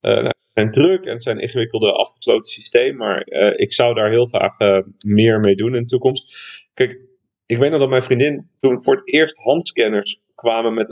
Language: Dutch